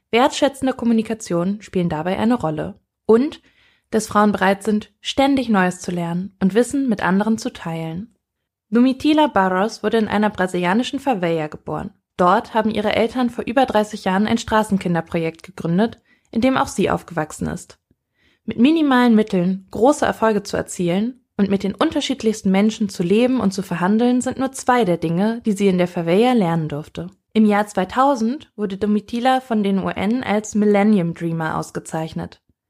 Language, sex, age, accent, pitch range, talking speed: German, female, 20-39, German, 185-240 Hz, 160 wpm